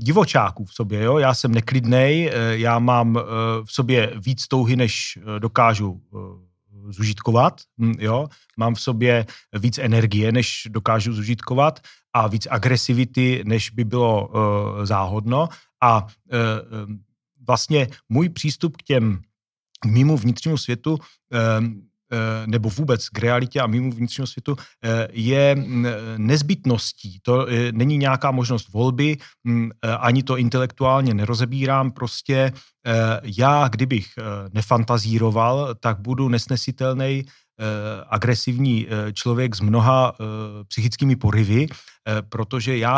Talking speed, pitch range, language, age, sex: 105 wpm, 110-130 Hz, Czech, 40-59, male